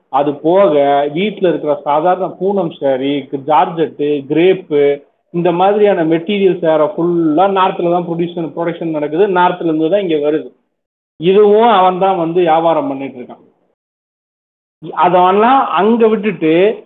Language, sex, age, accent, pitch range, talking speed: Tamil, male, 40-59, native, 150-200 Hz, 115 wpm